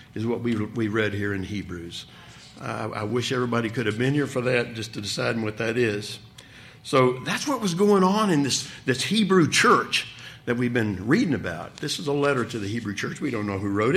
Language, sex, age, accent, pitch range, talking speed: English, male, 60-79, American, 115-160 Hz, 230 wpm